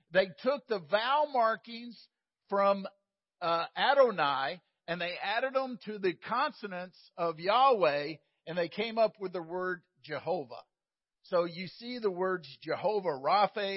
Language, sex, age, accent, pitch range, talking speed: English, male, 50-69, American, 160-215 Hz, 140 wpm